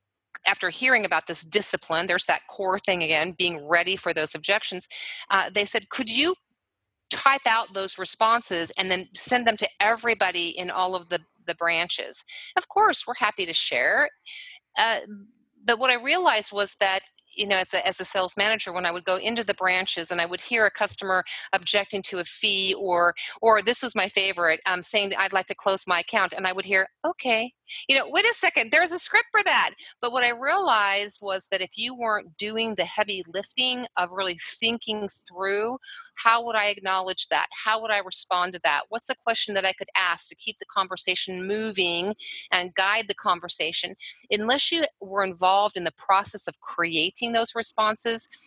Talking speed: 195 wpm